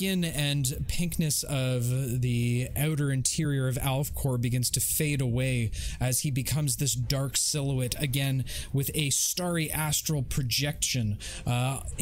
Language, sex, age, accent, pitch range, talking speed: English, male, 20-39, American, 120-150 Hz, 125 wpm